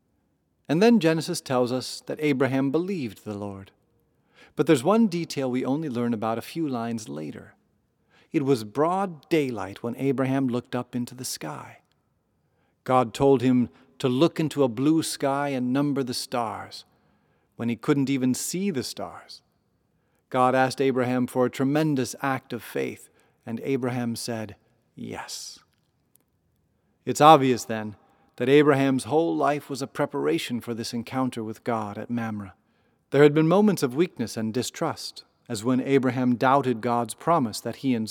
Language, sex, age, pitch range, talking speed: English, male, 40-59, 115-145 Hz, 155 wpm